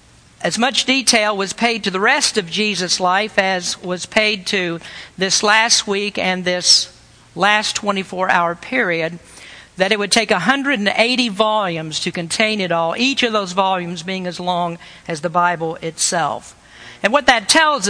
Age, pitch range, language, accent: 60-79, 180-225 Hz, English, American